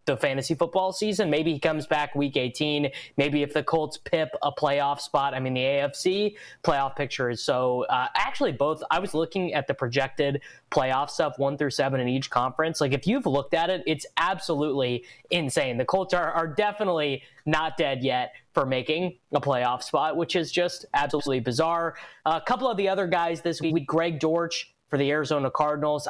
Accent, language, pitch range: American, English, 140-170 Hz